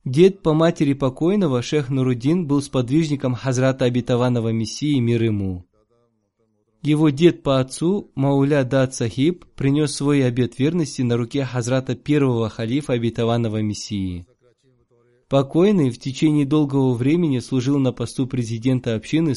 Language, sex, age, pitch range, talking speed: Russian, male, 20-39, 115-145 Hz, 125 wpm